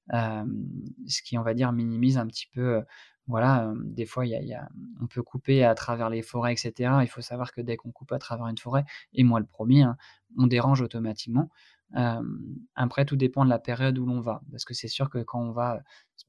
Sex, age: male, 20-39